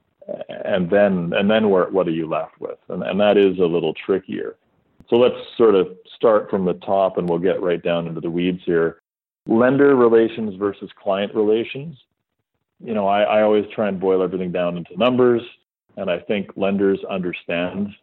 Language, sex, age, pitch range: English, male, 40-59, 90-110 Hz